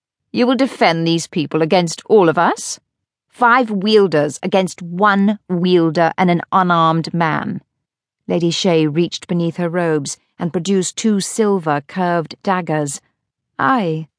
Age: 40-59